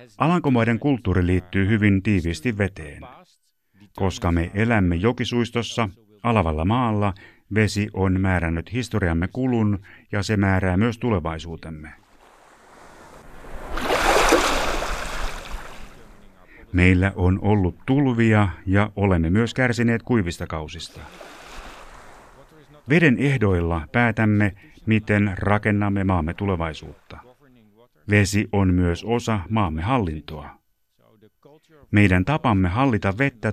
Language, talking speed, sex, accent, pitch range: Finnish, 90 wpm, male, native, 90-115 Hz